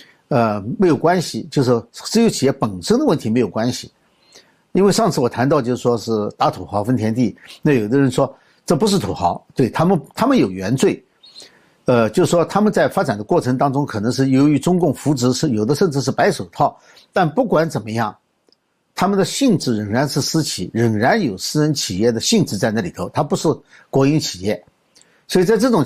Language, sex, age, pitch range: Chinese, male, 60-79, 120-185 Hz